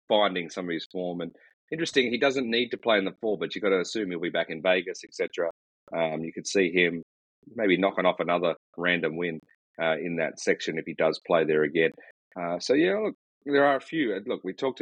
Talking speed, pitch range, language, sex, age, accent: 235 wpm, 85-105 Hz, English, male, 30-49, Australian